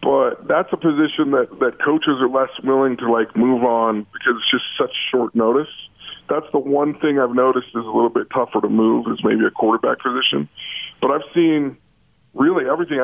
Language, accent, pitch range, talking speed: English, American, 125-155 Hz, 200 wpm